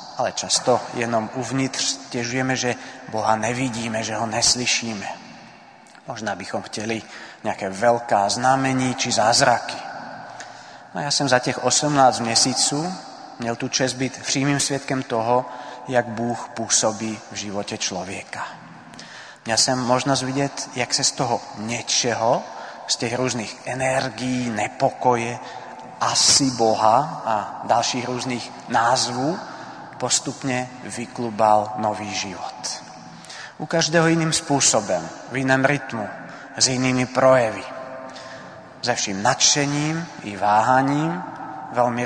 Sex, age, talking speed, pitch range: male, 30-49, 115 wpm, 115-130 Hz